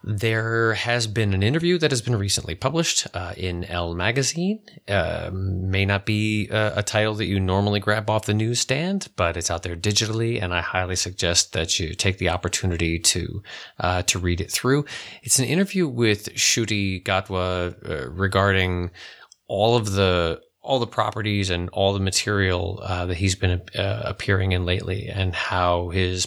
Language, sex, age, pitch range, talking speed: English, male, 30-49, 90-110 Hz, 180 wpm